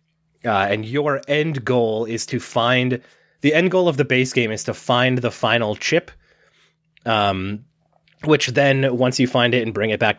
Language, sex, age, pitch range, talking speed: English, male, 20-39, 105-130 Hz, 190 wpm